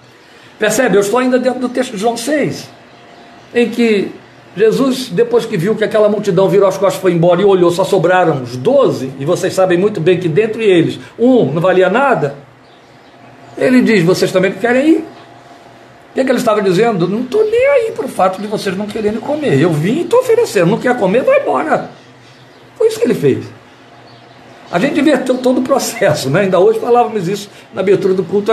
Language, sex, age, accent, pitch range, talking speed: Portuguese, male, 60-79, Brazilian, 140-235 Hz, 205 wpm